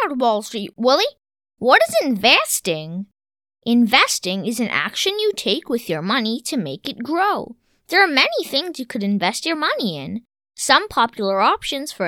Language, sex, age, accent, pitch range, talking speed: English, female, 20-39, American, 205-340 Hz, 165 wpm